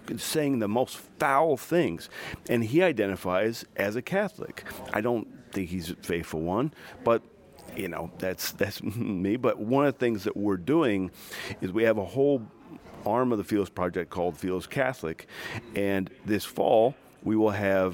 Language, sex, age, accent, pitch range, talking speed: English, male, 40-59, American, 90-110 Hz, 170 wpm